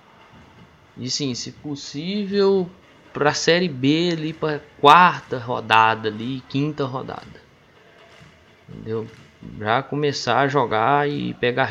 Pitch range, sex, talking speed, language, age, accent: 115-145 Hz, male, 110 wpm, Portuguese, 20-39, Brazilian